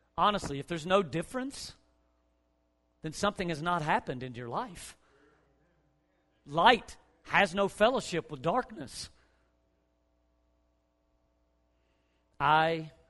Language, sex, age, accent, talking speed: English, male, 40-59, American, 90 wpm